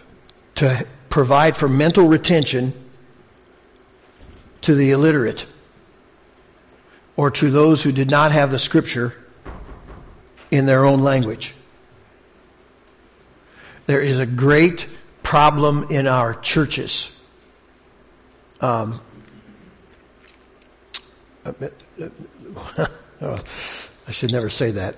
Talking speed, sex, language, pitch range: 85 wpm, male, English, 125-150 Hz